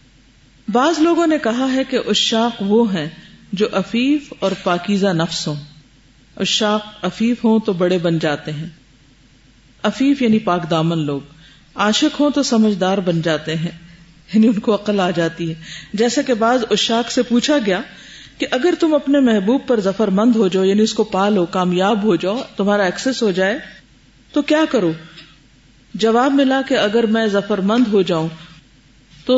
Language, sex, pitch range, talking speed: Urdu, female, 170-235 Hz, 170 wpm